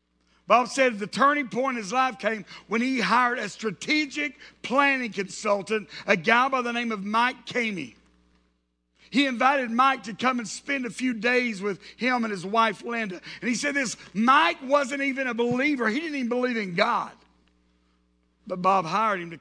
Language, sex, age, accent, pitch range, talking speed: English, male, 50-69, American, 180-240 Hz, 185 wpm